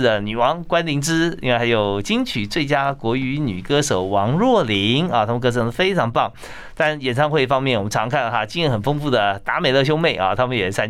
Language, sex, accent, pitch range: Chinese, male, native, 110-155 Hz